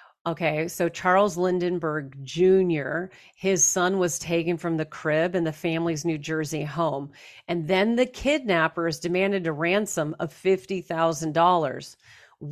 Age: 40-59